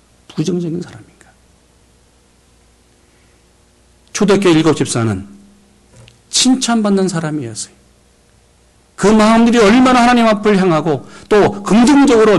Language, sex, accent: Korean, male, native